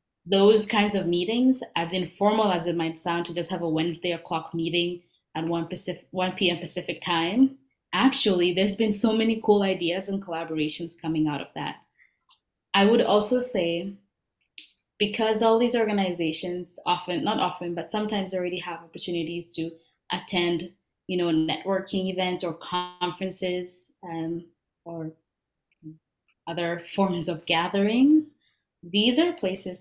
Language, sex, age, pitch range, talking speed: English, female, 20-39, 165-195 Hz, 140 wpm